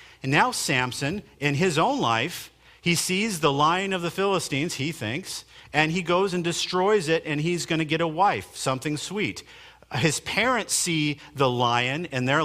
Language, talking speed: English, 180 wpm